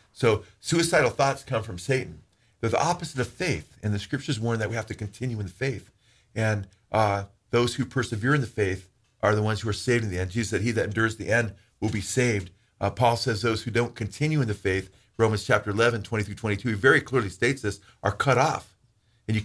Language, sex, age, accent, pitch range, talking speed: English, male, 40-59, American, 110-125 Hz, 235 wpm